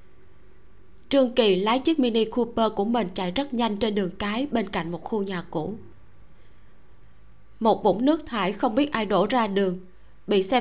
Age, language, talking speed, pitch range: 20-39, Vietnamese, 180 wpm, 185-240 Hz